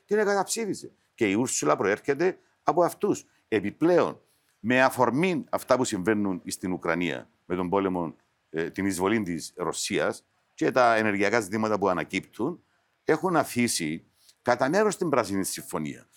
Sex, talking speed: male, 135 wpm